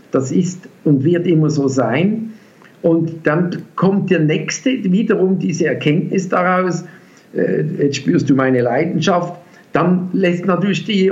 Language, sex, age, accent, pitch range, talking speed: German, male, 50-69, German, 155-190 Hz, 135 wpm